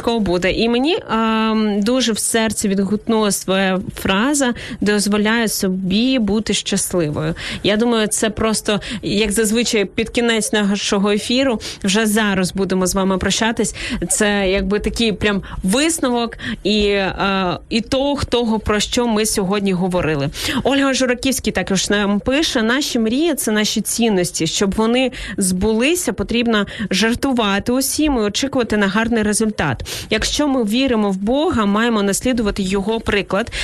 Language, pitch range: Ukrainian, 200-235 Hz